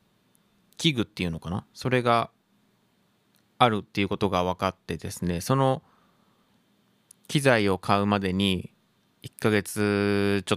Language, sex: Japanese, male